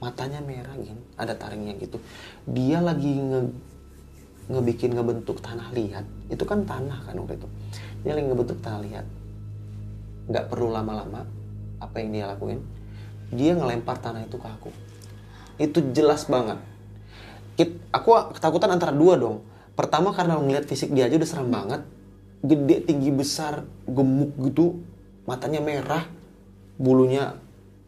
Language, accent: Indonesian, native